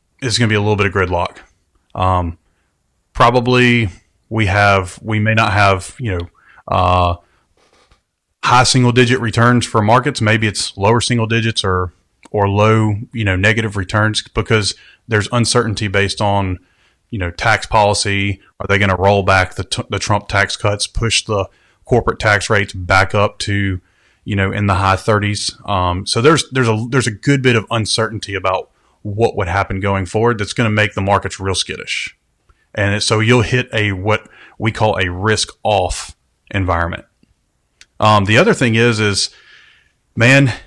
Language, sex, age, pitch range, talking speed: English, male, 30-49, 95-115 Hz, 170 wpm